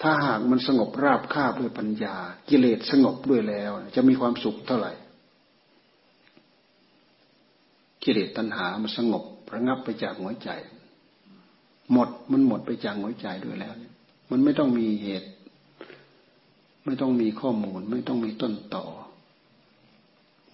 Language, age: Thai, 60-79